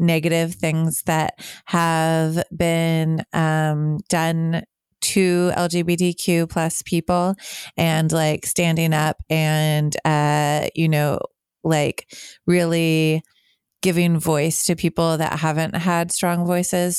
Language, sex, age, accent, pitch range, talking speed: English, female, 30-49, American, 155-175 Hz, 105 wpm